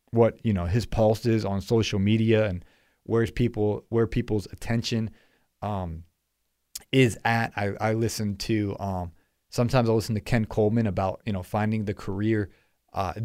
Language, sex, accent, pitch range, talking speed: English, male, American, 95-115 Hz, 165 wpm